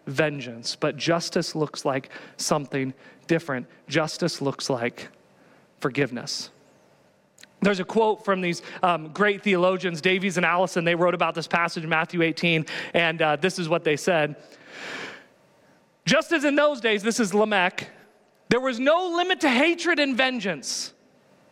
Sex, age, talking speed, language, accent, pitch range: male, 40-59, 150 wpm, English, American, 145-220 Hz